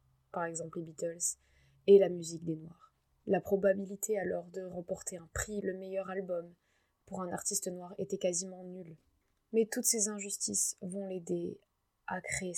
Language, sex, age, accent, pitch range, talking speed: French, female, 20-39, French, 175-205 Hz, 160 wpm